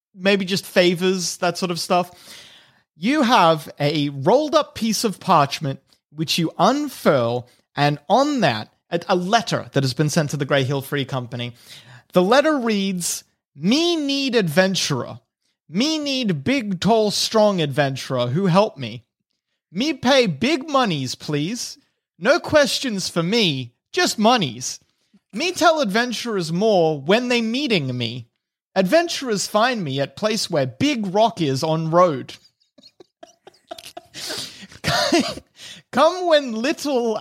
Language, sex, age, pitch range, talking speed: English, male, 30-49, 160-250 Hz, 130 wpm